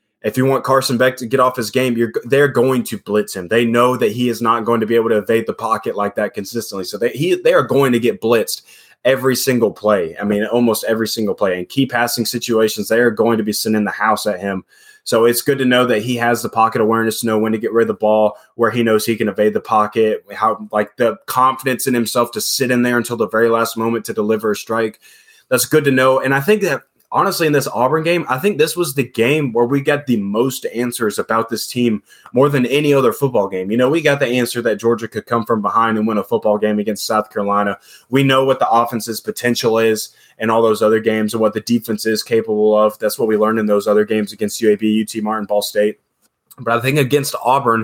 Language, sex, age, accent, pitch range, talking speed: English, male, 20-39, American, 110-130 Hz, 255 wpm